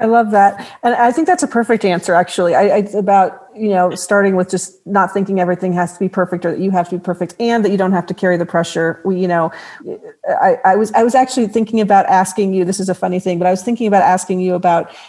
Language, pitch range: English, 180-230 Hz